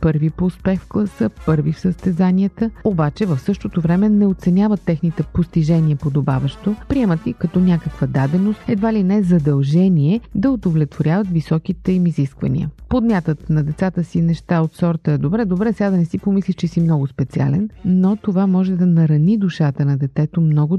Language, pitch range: Bulgarian, 150-195 Hz